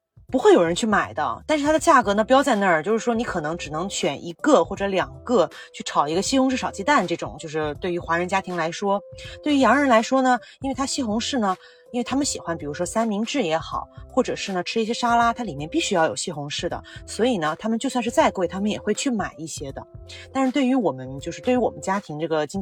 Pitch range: 160-235 Hz